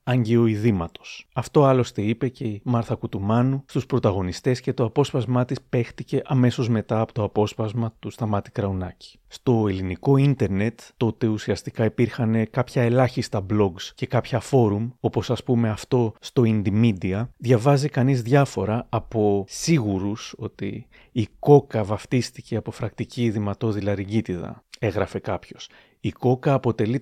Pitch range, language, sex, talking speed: 110-130 Hz, Greek, male, 130 wpm